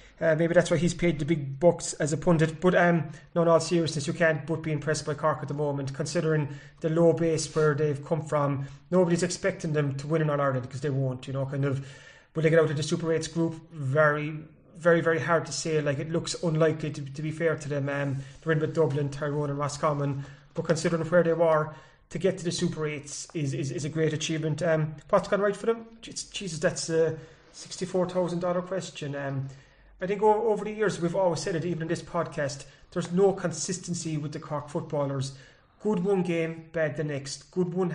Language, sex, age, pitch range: English, male, 30-49, 150-175 Hz